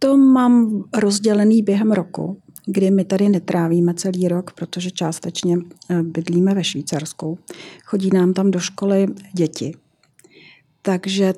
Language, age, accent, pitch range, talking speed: Czech, 40-59, native, 180-200 Hz, 120 wpm